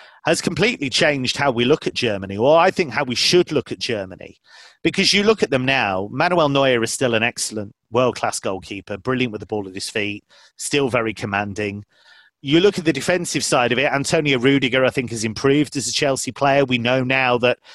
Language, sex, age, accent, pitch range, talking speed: English, male, 30-49, British, 115-140 Hz, 215 wpm